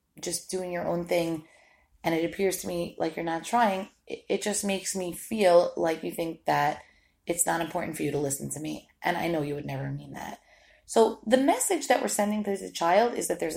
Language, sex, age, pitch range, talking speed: English, female, 30-49, 155-210 Hz, 230 wpm